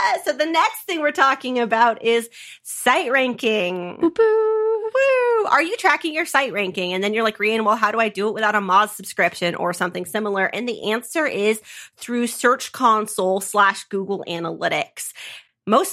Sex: female